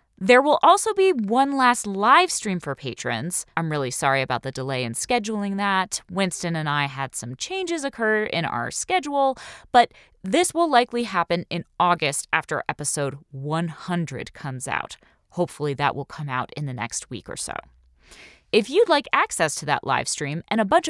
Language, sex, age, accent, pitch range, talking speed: English, female, 20-39, American, 155-245 Hz, 180 wpm